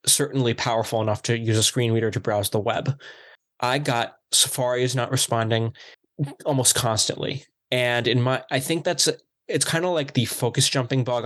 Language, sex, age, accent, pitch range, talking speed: English, male, 20-39, American, 115-135 Hz, 180 wpm